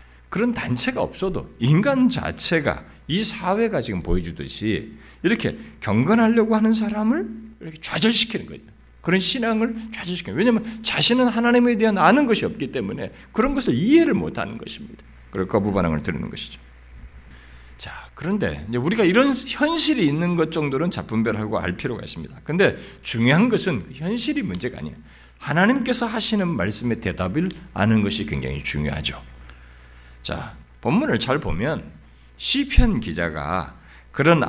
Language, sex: Korean, male